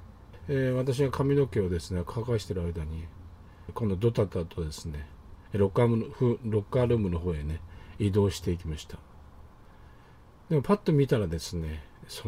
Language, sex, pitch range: Japanese, male, 85-120 Hz